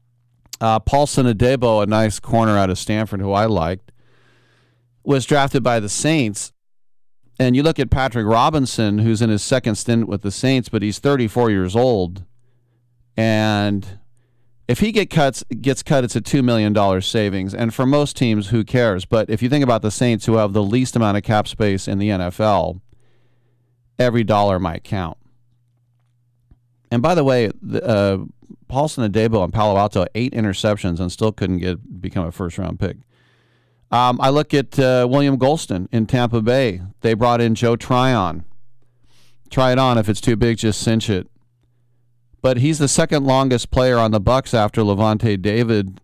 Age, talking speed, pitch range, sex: 40-59, 175 wpm, 105-125 Hz, male